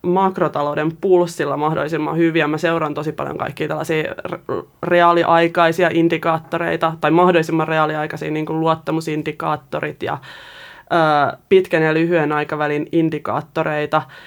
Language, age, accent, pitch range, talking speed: Finnish, 20-39, native, 155-180 Hz, 100 wpm